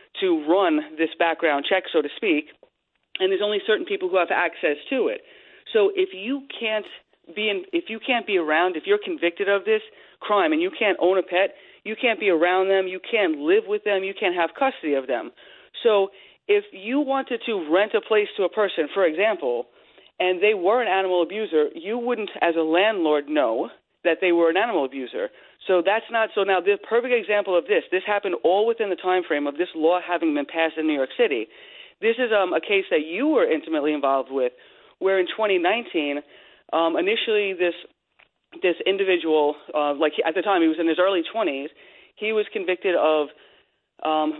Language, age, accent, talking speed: English, 40-59, American, 205 wpm